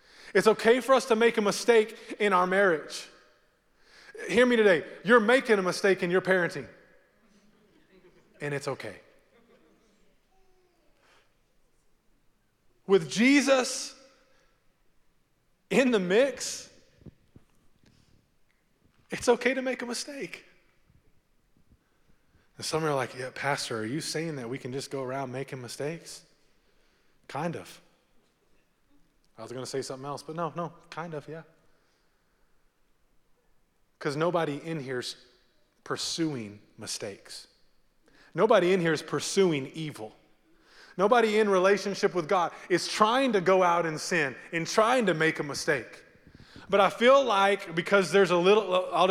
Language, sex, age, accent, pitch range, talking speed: English, male, 20-39, American, 150-215 Hz, 135 wpm